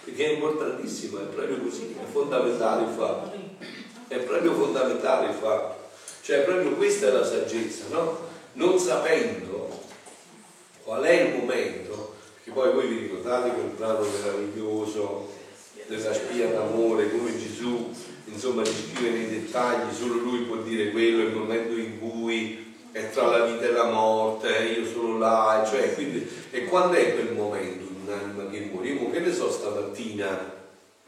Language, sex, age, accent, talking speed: Italian, male, 40-59, native, 155 wpm